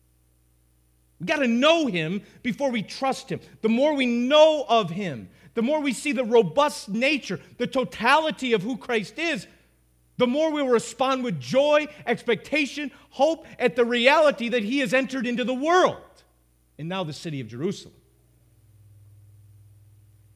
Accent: American